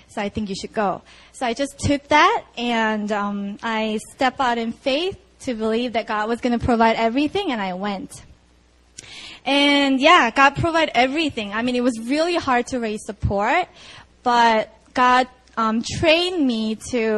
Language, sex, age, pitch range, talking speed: English, female, 20-39, 210-260 Hz, 175 wpm